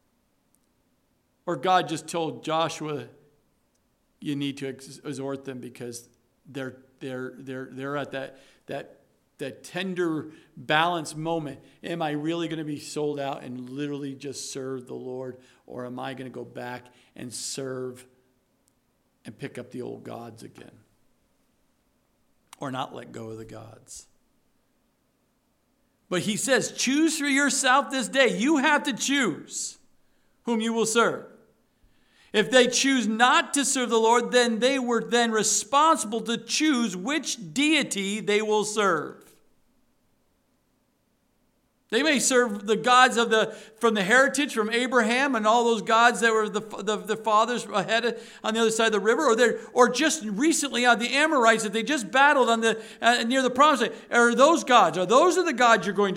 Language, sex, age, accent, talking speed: English, male, 50-69, American, 165 wpm